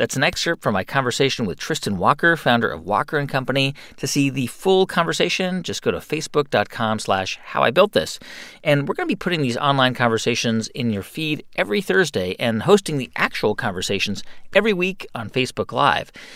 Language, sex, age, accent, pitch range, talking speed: English, male, 40-59, American, 120-175 Hz, 180 wpm